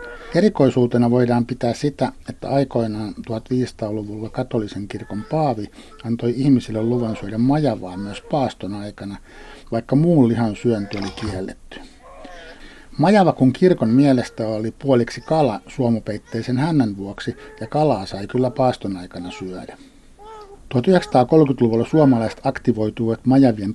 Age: 60-79